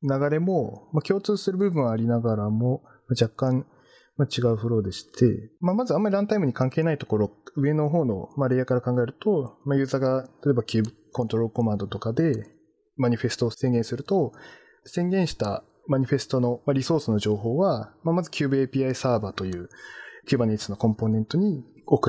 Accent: native